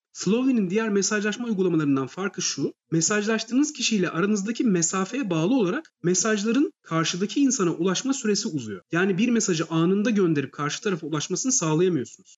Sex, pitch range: male, 170-230 Hz